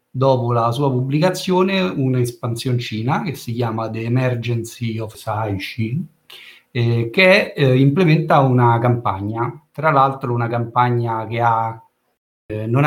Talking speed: 120 wpm